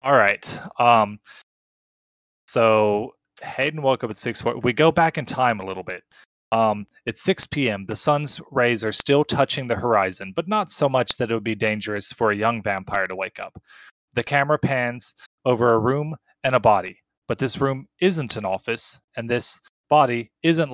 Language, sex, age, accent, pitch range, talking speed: English, male, 30-49, American, 110-140 Hz, 185 wpm